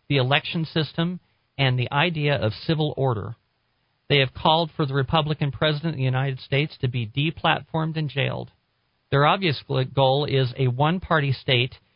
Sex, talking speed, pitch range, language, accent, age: male, 165 wpm, 125-150 Hz, English, American, 40-59